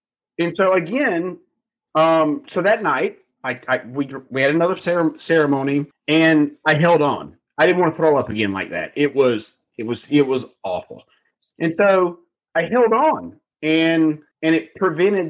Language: English